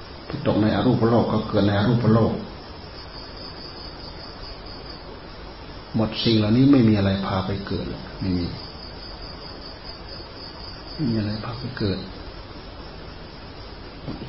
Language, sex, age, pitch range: Thai, male, 30-49, 85-105 Hz